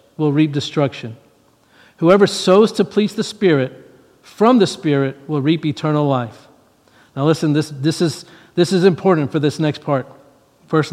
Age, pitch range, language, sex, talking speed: 50-69, 140-185 Hz, English, male, 150 wpm